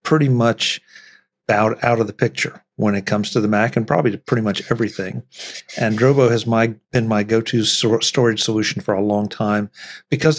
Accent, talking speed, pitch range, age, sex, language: American, 185 wpm, 105-125 Hz, 50-69, male, English